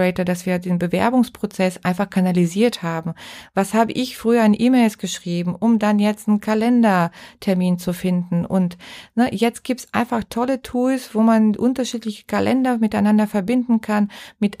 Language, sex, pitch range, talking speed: German, female, 195-230 Hz, 150 wpm